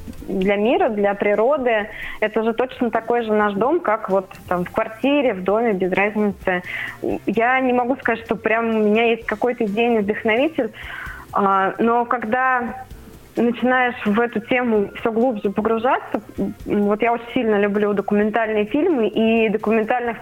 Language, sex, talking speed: Russian, female, 150 wpm